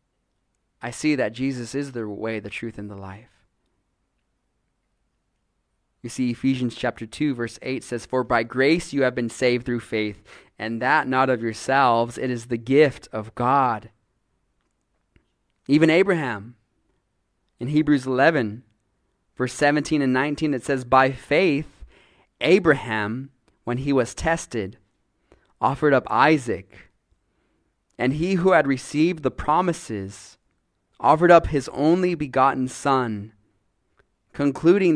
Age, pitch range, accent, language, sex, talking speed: 20-39, 110-145 Hz, American, English, male, 130 wpm